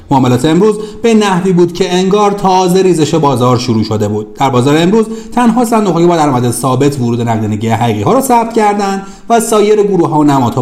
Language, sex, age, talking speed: Persian, male, 40-59, 190 wpm